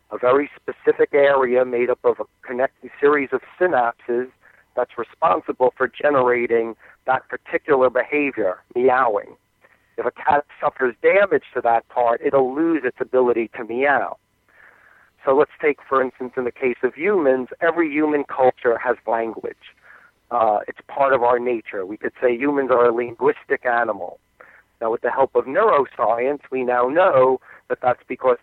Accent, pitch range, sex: American, 125-170 Hz, male